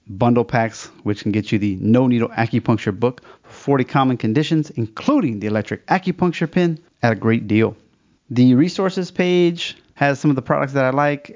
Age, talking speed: 30-49, 180 wpm